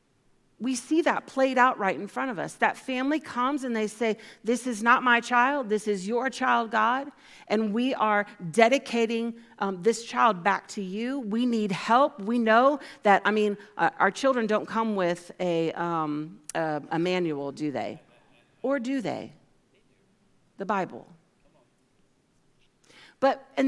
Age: 40-59